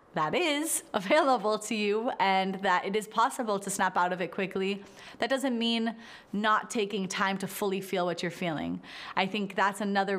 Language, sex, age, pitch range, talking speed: English, female, 30-49, 185-220 Hz, 190 wpm